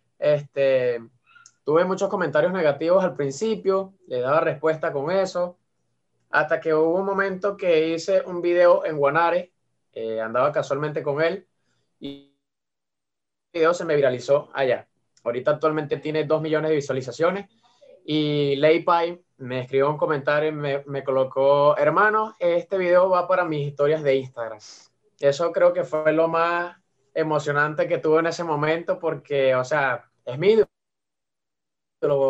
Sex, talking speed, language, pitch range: male, 145 wpm, Spanish, 140-175 Hz